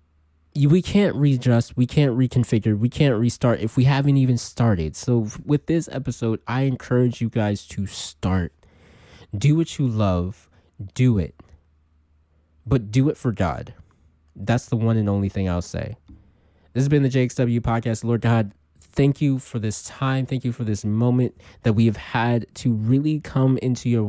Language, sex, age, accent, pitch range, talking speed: English, male, 20-39, American, 100-130 Hz, 175 wpm